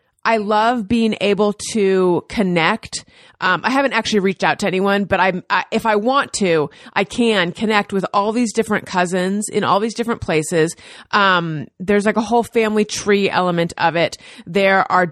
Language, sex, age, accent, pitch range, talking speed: English, female, 30-49, American, 180-220 Hz, 180 wpm